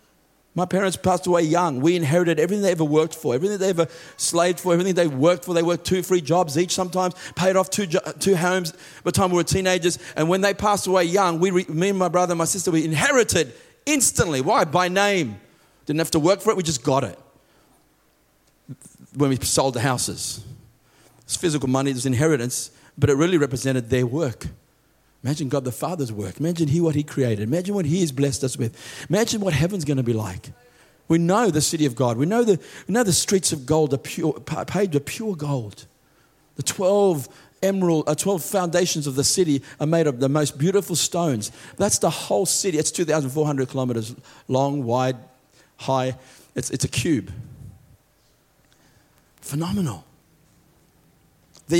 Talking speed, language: 190 wpm, English